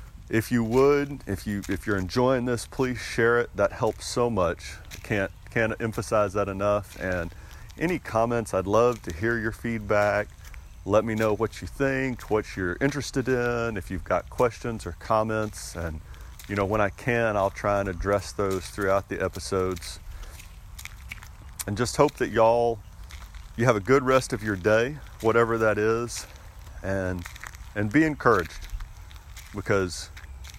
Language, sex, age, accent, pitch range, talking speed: English, male, 40-59, American, 85-110 Hz, 160 wpm